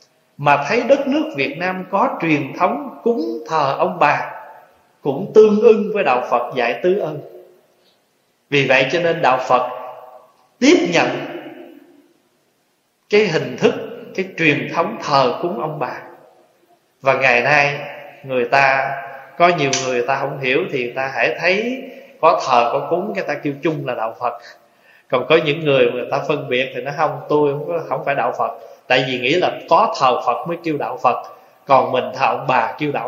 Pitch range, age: 135-195 Hz, 20-39